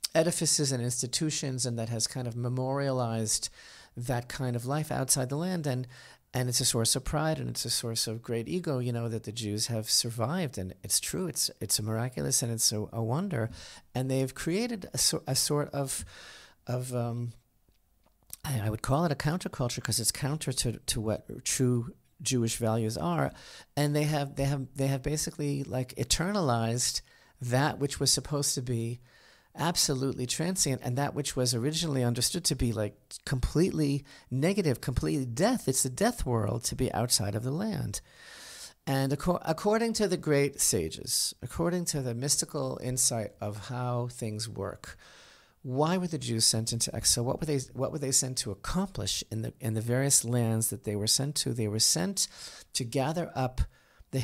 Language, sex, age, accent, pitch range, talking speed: English, male, 40-59, American, 115-145 Hz, 180 wpm